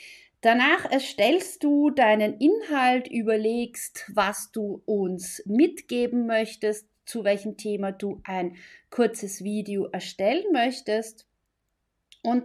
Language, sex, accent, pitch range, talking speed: German, female, German, 200-245 Hz, 100 wpm